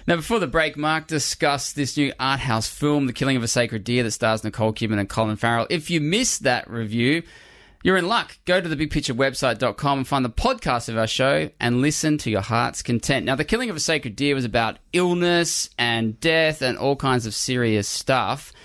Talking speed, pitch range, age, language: 210 wpm, 115-155 Hz, 20-39, English